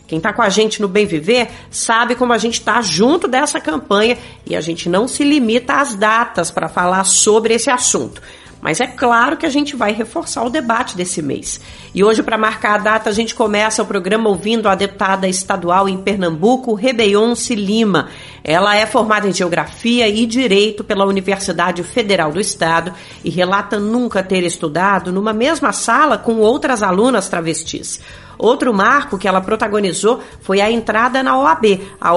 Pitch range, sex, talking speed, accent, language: 195-235 Hz, female, 175 wpm, Brazilian, Portuguese